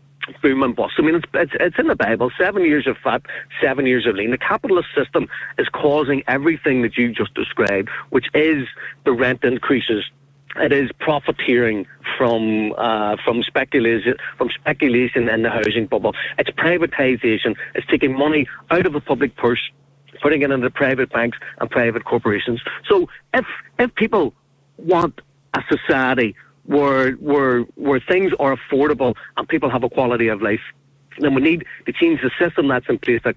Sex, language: male, English